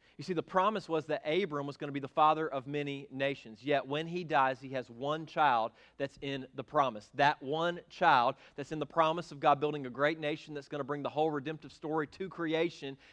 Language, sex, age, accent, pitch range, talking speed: English, male, 40-59, American, 135-165 Hz, 235 wpm